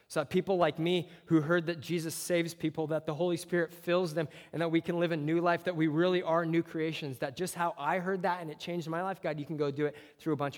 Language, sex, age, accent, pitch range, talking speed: English, male, 20-39, American, 145-170 Hz, 290 wpm